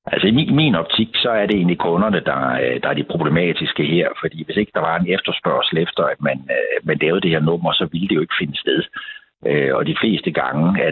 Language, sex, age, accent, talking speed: Danish, male, 60-79, native, 230 wpm